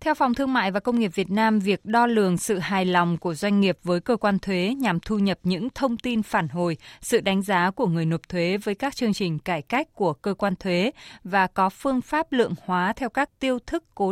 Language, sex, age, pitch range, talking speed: Vietnamese, female, 20-39, 180-225 Hz, 245 wpm